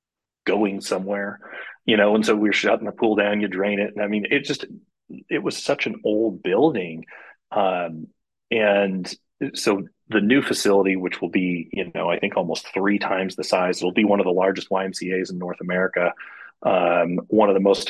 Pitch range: 90-105 Hz